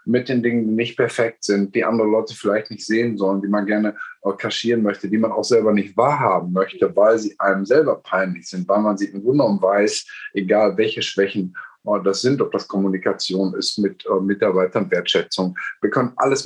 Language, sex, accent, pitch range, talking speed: German, male, German, 95-115 Hz, 195 wpm